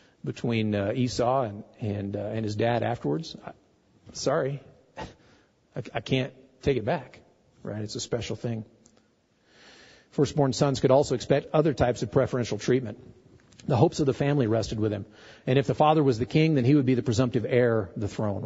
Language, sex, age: English, male, 50-69